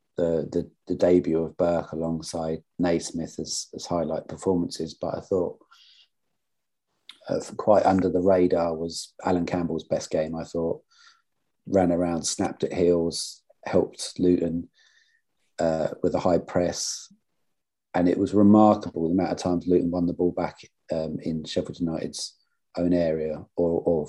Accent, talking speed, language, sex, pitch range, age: British, 150 wpm, English, male, 80-90 Hz, 40-59